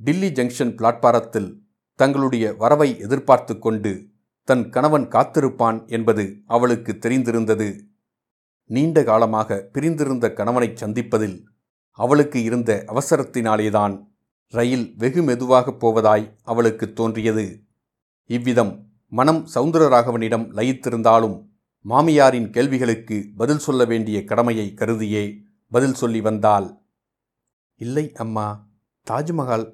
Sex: male